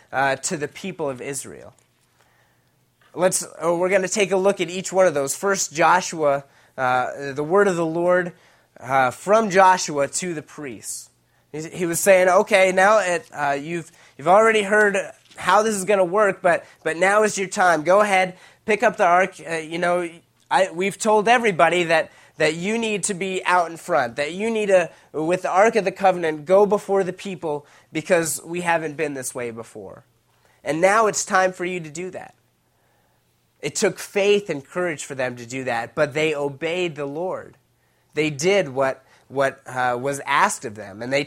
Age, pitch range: 20-39, 140-190 Hz